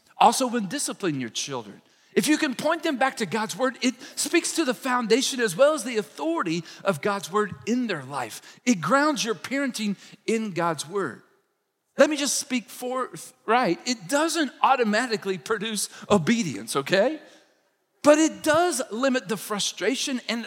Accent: American